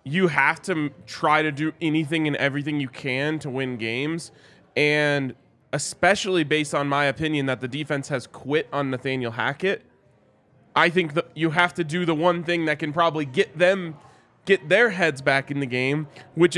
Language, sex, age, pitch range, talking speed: English, male, 20-39, 130-165 Hz, 185 wpm